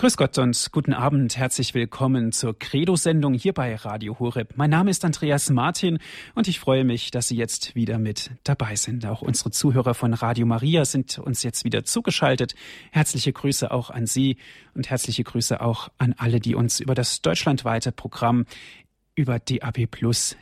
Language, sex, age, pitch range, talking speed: German, male, 40-59, 120-145 Hz, 175 wpm